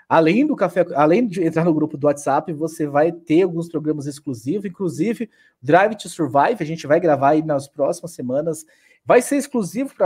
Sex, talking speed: male, 180 wpm